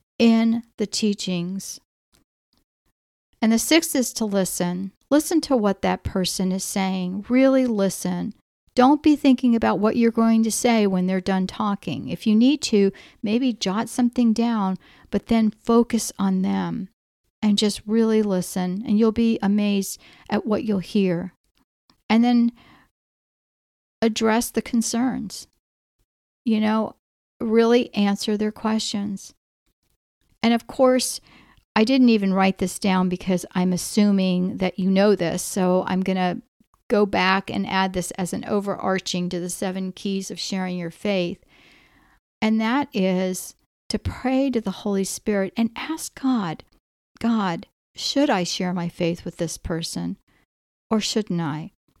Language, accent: English, American